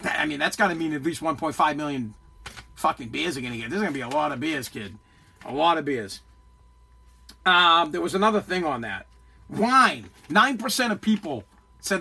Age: 40-59